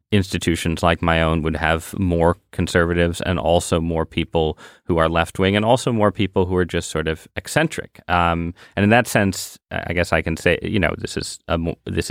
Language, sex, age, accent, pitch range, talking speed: English, male, 30-49, American, 85-95 Hz, 205 wpm